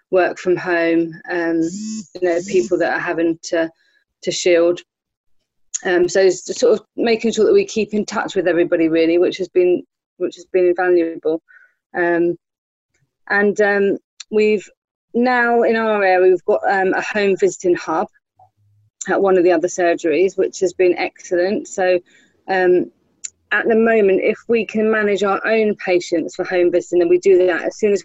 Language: English